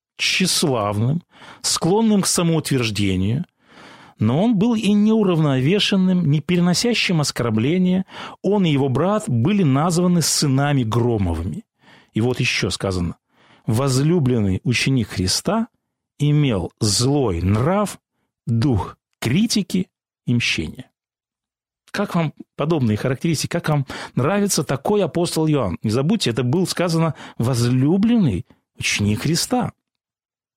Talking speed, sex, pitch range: 100 wpm, male, 120-185 Hz